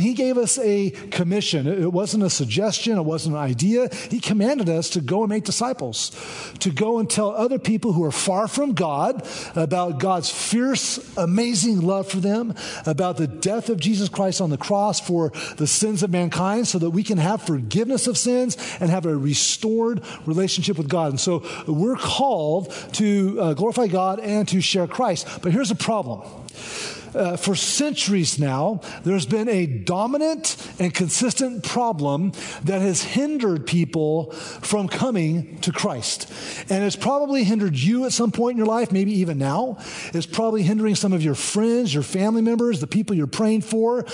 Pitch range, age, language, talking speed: 175-225 Hz, 40-59, English, 180 wpm